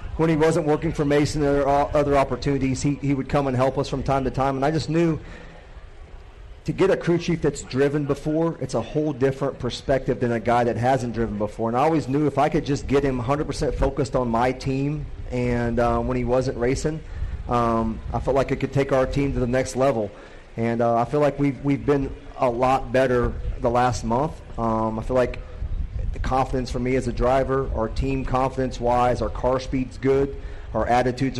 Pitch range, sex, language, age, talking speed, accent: 115-135 Hz, male, English, 30-49, 215 wpm, American